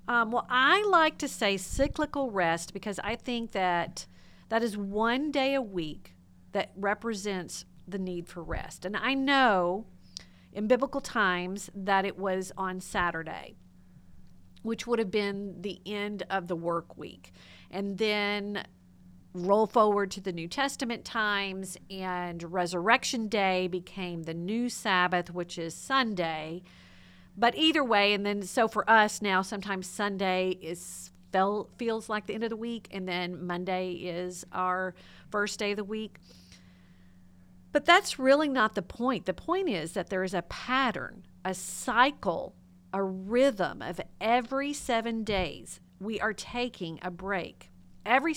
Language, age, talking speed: English, 50-69, 155 wpm